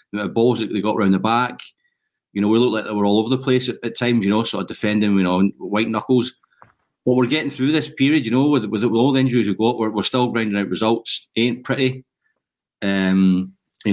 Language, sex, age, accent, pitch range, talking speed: English, male, 30-49, British, 100-125 Hz, 215 wpm